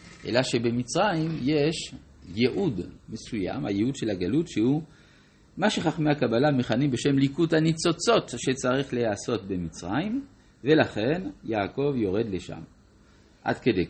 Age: 50-69